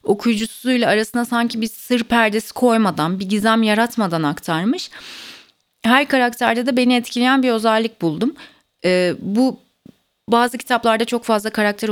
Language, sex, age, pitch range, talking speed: Turkish, female, 30-49, 180-230 Hz, 130 wpm